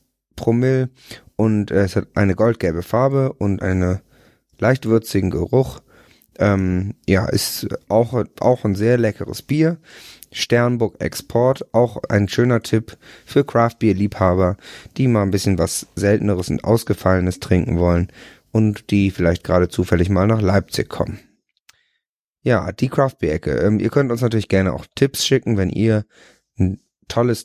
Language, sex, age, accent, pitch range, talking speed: German, male, 30-49, German, 95-115 Hz, 140 wpm